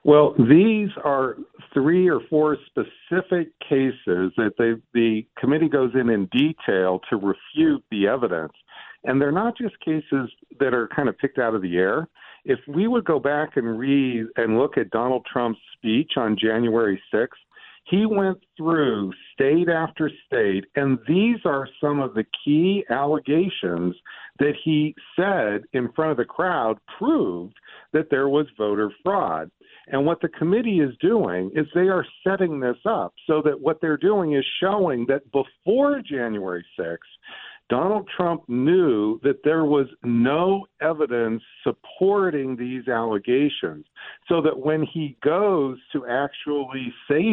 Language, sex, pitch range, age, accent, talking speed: English, male, 120-170 Hz, 50-69, American, 150 wpm